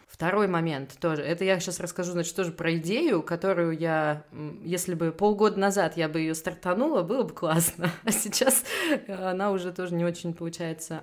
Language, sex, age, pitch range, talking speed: Russian, female, 20-39, 155-180 Hz, 175 wpm